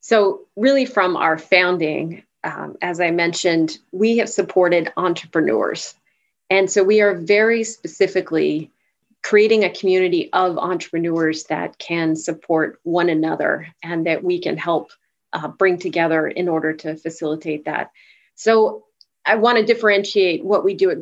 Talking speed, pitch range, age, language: 145 wpm, 170-215 Hz, 30-49, English